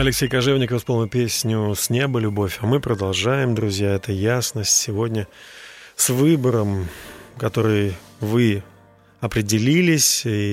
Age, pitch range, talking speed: 30-49, 105-135 Hz, 115 wpm